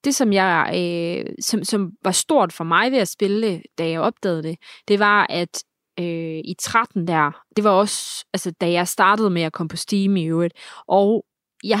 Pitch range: 175-225 Hz